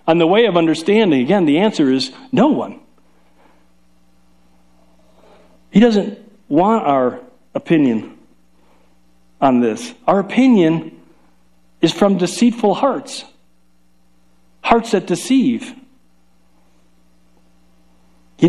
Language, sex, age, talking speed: English, male, 50-69, 90 wpm